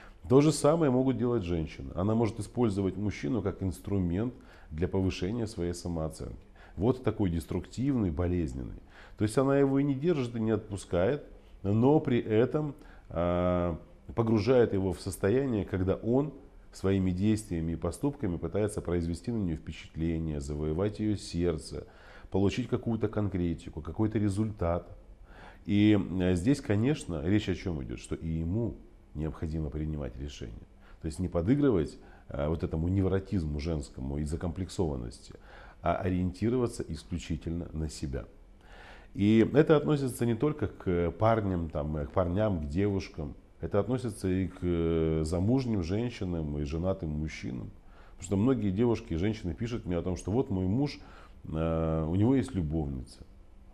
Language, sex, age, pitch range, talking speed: Russian, male, 40-59, 85-110 Hz, 135 wpm